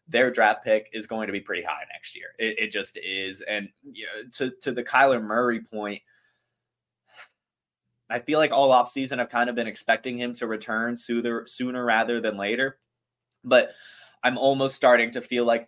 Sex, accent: male, American